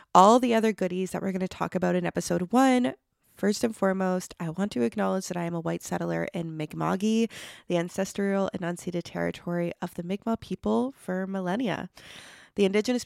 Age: 20-39